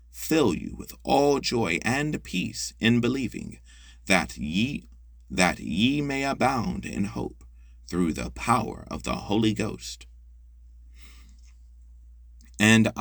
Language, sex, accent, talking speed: French, male, American, 115 wpm